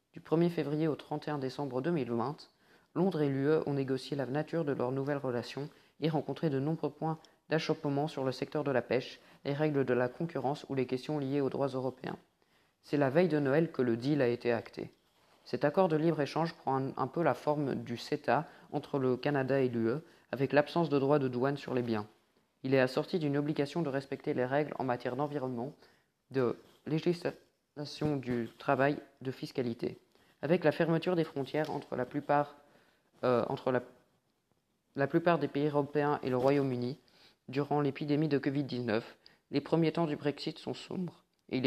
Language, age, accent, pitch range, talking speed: French, 20-39, French, 130-150 Hz, 185 wpm